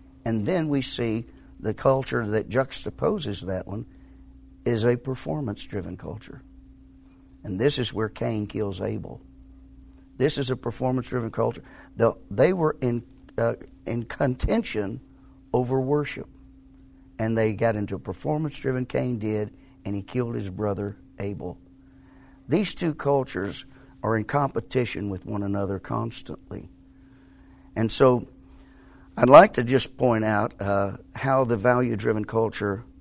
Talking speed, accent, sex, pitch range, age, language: 125 wpm, American, male, 95-130 Hz, 50-69, English